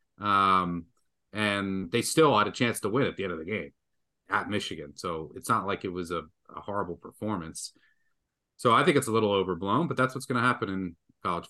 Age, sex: 30-49, male